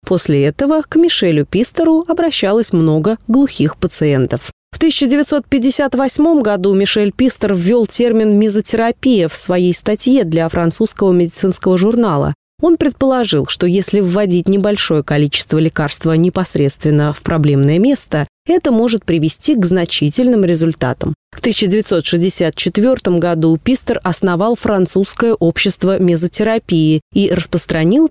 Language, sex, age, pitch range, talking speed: Russian, female, 20-39, 175-245 Hz, 115 wpm